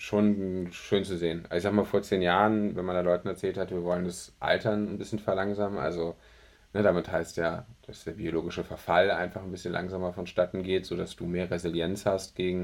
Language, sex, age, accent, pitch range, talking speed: German, male, 10-29, German, 85-100 Hz, 210 wpm